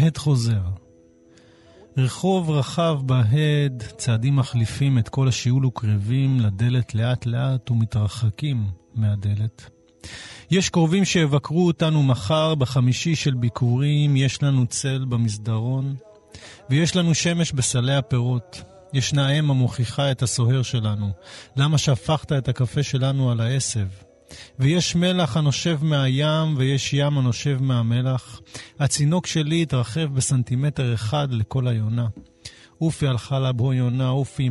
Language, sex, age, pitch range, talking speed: Hebrew, male, 30-49, 115-145 Hz, 115 wpm